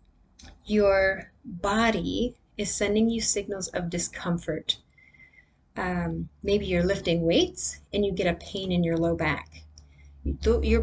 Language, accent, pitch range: English, American, 165-230 Hz